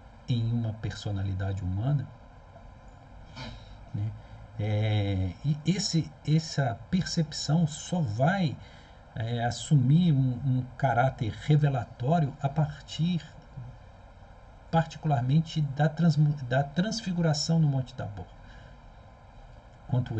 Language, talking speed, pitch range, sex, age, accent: Portuguese, 85 wpm, 105-145 Hz, male, 50-69, Brazilian